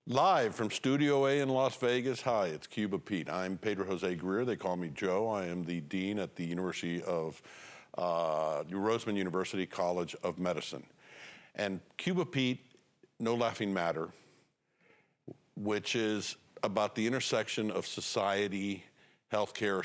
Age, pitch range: 50-69, 90-110 Hz